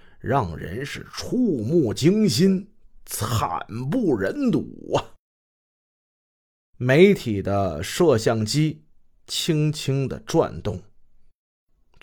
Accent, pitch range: native, 105-175 Hz